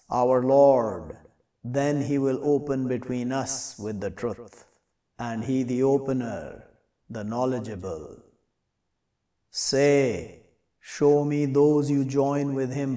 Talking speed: 115 wpm